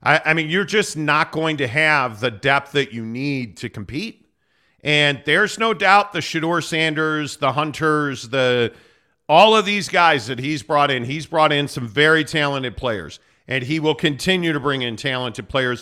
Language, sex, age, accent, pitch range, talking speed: English, male, 50-69, American, 140-180 Hz, 185 wpm